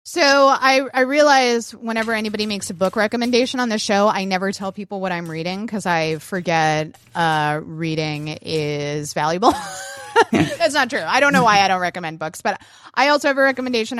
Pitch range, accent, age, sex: 185-250 Hz, American, 20-39, female